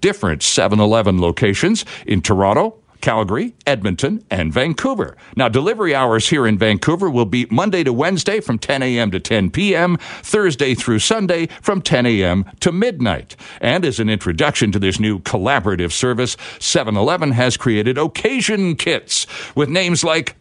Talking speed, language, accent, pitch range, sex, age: 150 wpm, English, American, 110-160 Hz, male, 60-79